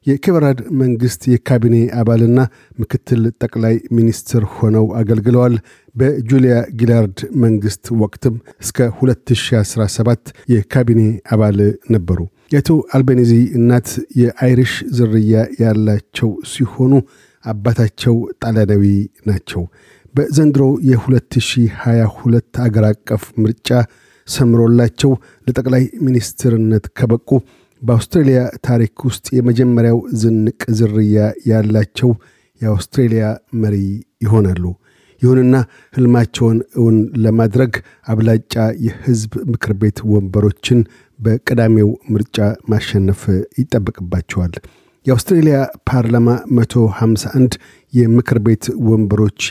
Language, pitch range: Amharic, 110-125 Hz